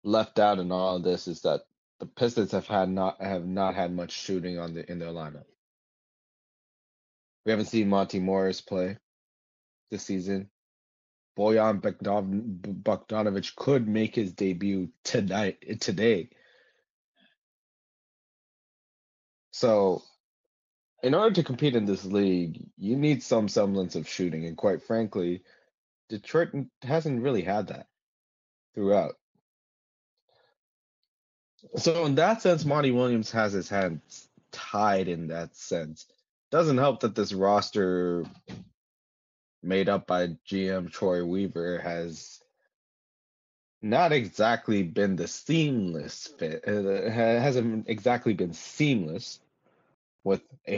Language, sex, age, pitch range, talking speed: English, male, 30-49, 90-115 Hz, 120 wpm